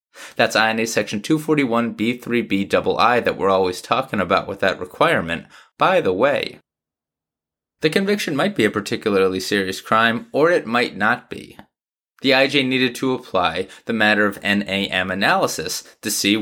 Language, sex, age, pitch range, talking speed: English, male, 20-39, 105-140 Hz, 145 wpm